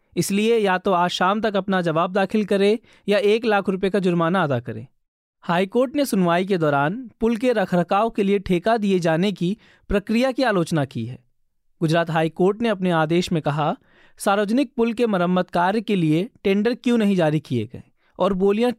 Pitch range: 170-215 Hz